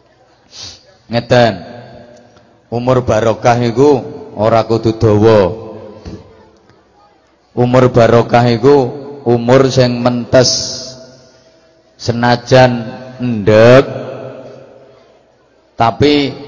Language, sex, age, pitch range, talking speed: English, male, 30-49, 120-145 Hz, 60 wpm